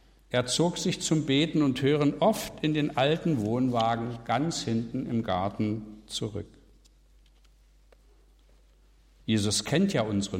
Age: 60-79